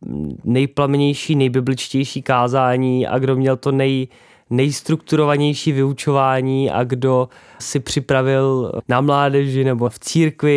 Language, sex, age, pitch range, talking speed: Czech, male, 20-39, 120-140 Hz, 110 wpm